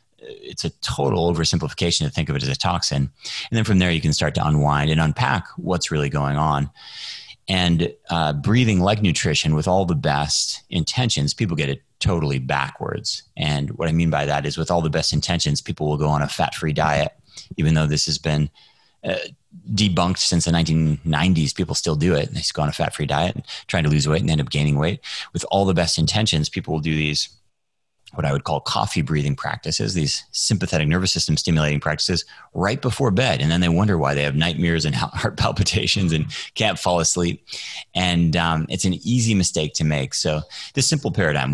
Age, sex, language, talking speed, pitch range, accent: 30-49, male, English, 205 wpm, 75-95 Hz, American